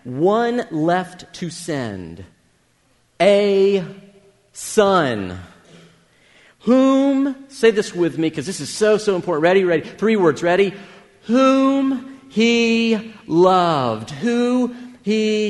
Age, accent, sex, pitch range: 40-59, American, male, 135-205 Hz